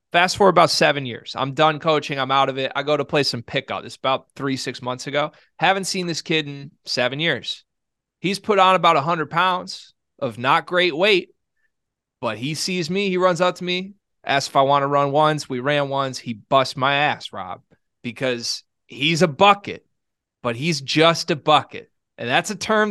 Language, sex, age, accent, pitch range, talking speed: English, male, 30-49, American, 135-175 Hz, 205 wpm